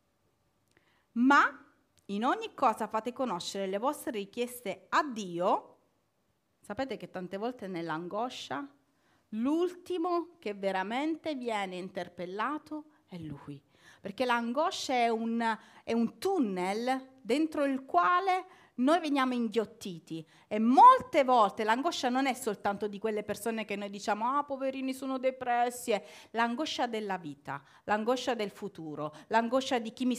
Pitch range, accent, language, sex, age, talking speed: 200-285 Hz, native, Italian, female, 40-59, 125 wpm